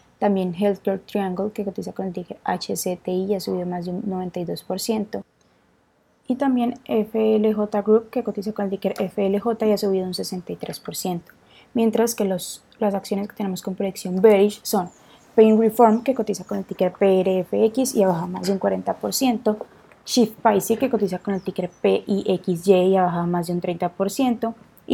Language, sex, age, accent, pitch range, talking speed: Spanish, female, 20-39, Colombian, 185-220 Hz, 175 wpm